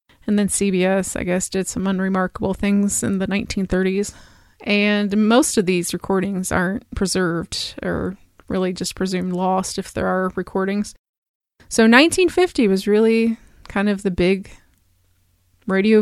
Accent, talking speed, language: American, 140 wpm, English